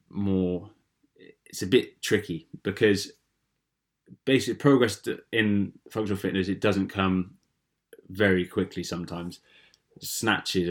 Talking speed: 100 wpm